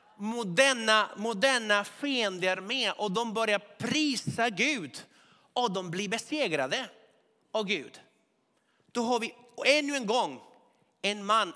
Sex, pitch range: male, 180-225 Hz